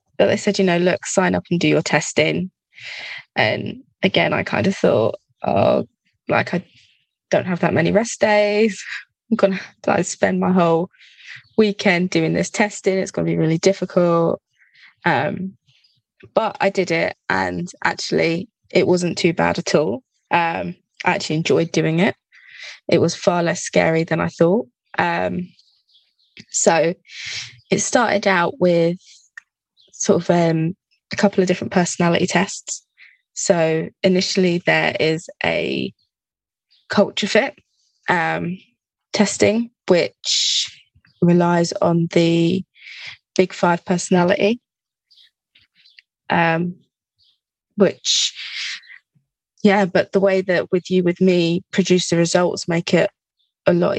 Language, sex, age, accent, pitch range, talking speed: English, female, 20-39, British, 165-195 Hz, 130 wpm